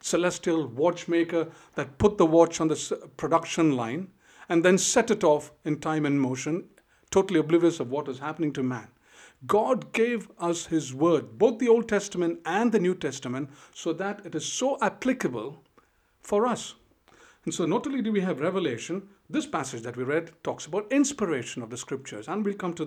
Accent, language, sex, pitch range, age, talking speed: Indian, English, male, 150-210 Hz, 50-69, 185 wpm